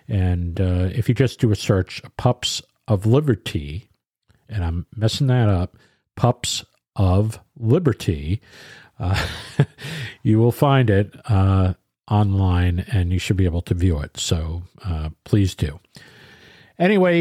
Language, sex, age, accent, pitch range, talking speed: English, male, 50-69, American, 95-130 Hz, 135 wpm